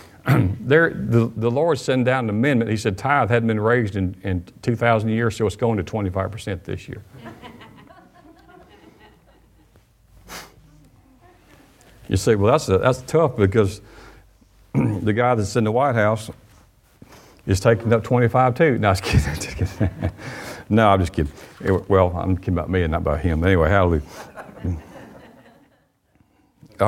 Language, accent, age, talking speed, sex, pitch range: English, American, 50-69, 145 wpm, male, 90-115 Hz